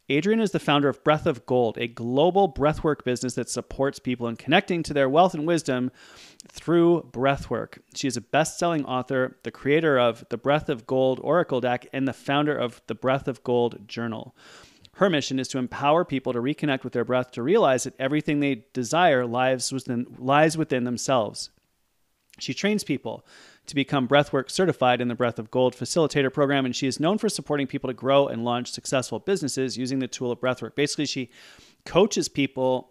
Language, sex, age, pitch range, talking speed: English, male, 30-49, 125-145 Hz, 190 wpm